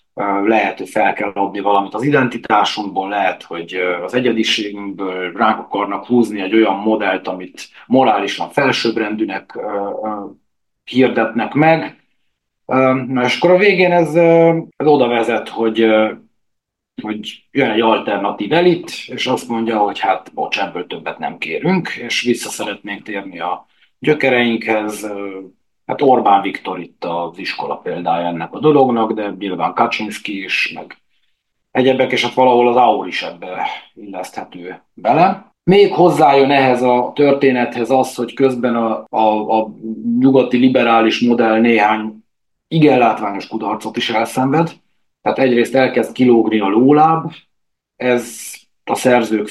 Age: 30-49